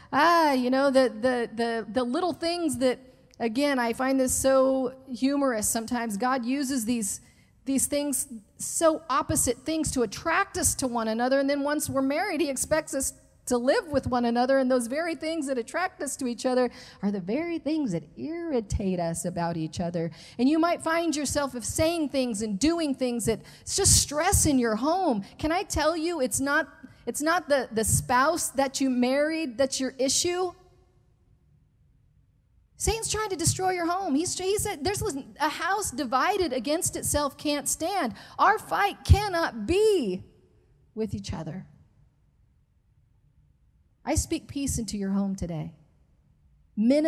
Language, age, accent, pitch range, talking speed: English, 40-59, American, 240-315 Hz, 165 wpm